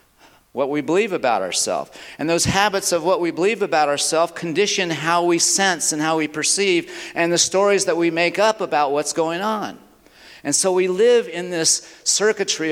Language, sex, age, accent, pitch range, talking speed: English, male, 50-69, American, 140-185 Hz, 190 wpm